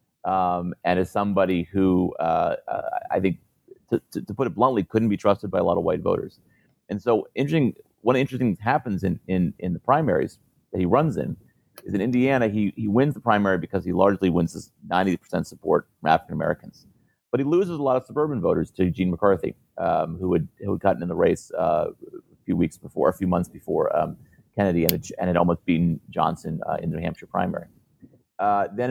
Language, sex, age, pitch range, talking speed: English, male, 30-49, 95-130 Hz, 220 wpm